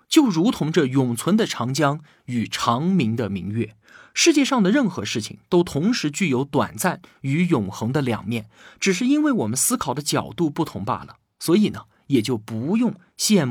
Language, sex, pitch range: Chinese, male, 115-195 Hz